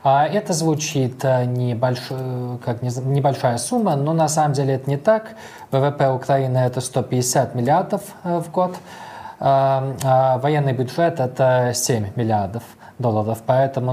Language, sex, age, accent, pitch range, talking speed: Russian, male, 20-39, native, 115-140 Hz, 110 wpm